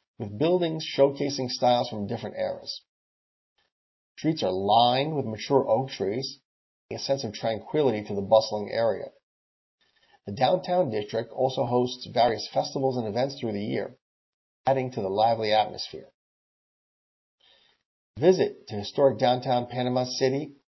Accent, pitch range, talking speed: American, 105-140 Hz, 130 wpm